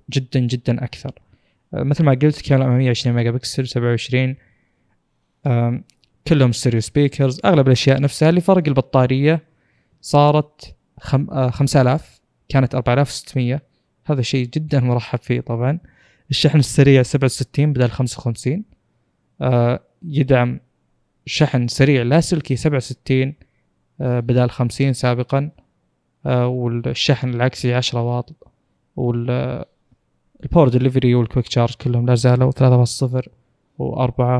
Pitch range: 125-145 Hz